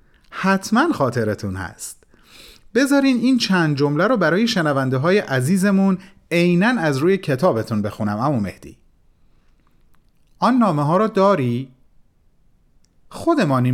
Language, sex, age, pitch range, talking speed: Persian, male, 40-59, 120-200 Hz, 110 wpm